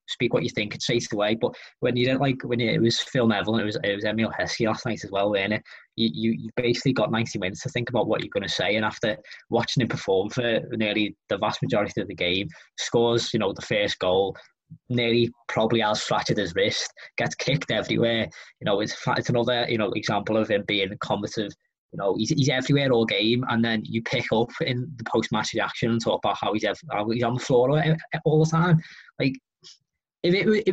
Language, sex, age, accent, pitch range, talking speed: English, male, 20-39, British, 110-135 Hz, 230 wpm